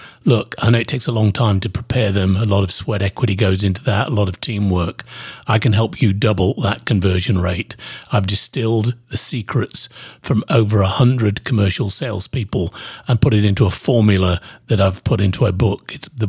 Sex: male